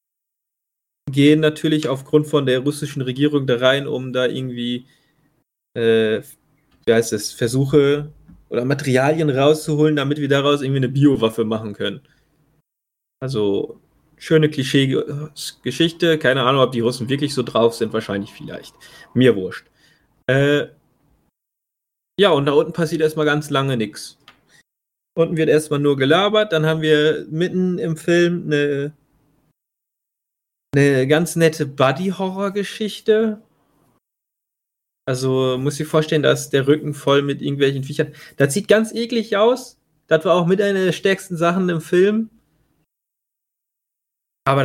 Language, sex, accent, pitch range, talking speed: German, male, German, 135-160 Hz, 130 wpm